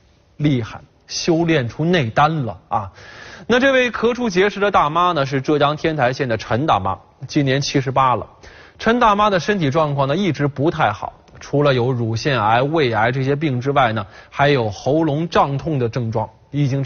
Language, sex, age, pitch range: Chinese, male, 20-39, 130-175 Hz